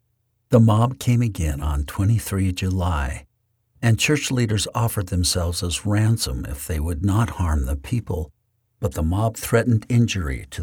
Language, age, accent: English, 60-79, American